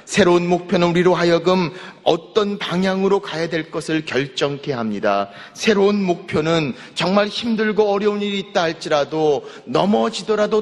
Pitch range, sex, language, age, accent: 135-205 Hz, male, Korean, 40-59, native